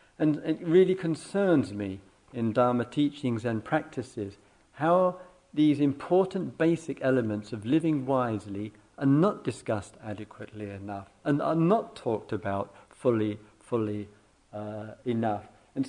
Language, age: English, 50-69